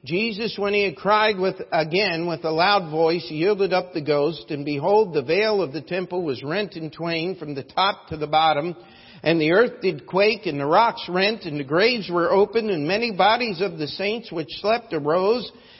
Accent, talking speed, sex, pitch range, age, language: American, 215 wpm, male, 160-210 Hz, 50-69, English